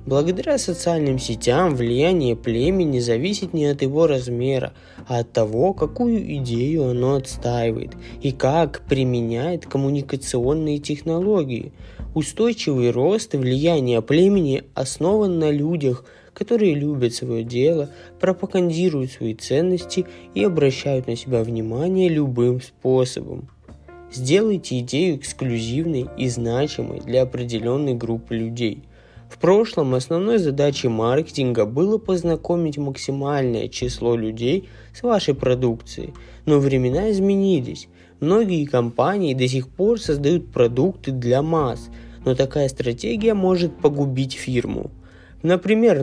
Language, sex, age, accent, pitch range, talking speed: Russian, male, 20-39, native, 120-170 Hz, 110 wpm